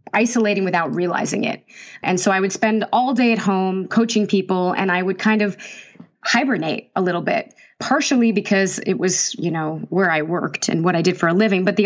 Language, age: English, 20-39